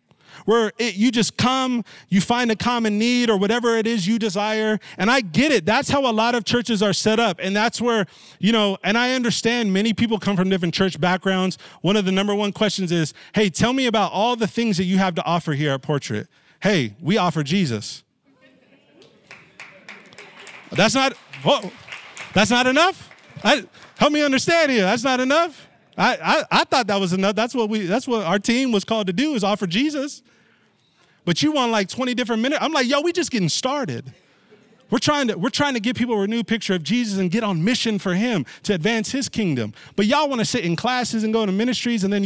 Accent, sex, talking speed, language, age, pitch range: American, male, 215 wpm, English, 30-49, 195-240 Hz